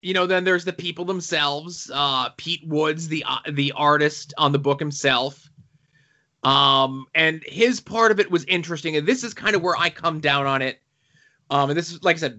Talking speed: 215 wpm